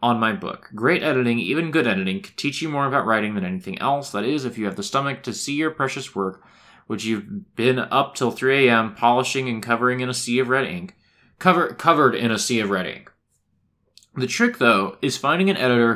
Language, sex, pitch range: English, male, 105-145 Hz